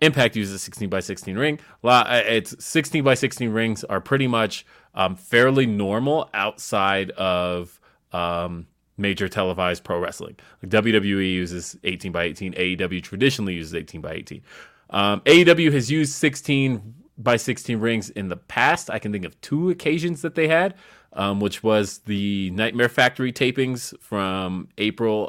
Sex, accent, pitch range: male, American, 95-130 Hz